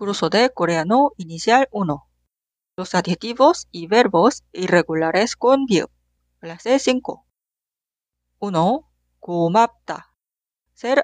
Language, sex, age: Korean, female, 40-59